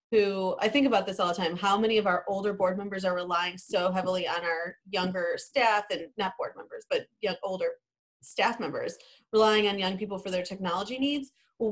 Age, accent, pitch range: 30-49, American, 185-230 Hz